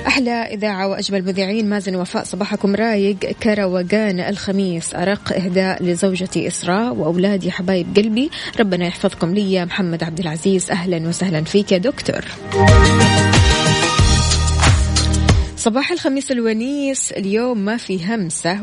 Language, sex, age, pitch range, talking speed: Arabic, female, 20-39, 180-220 Hz, 115 wpm